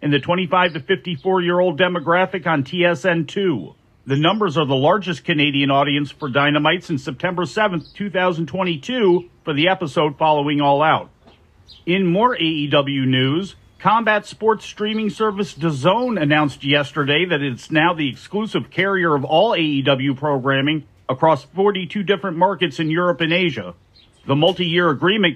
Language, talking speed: English, 140 wpm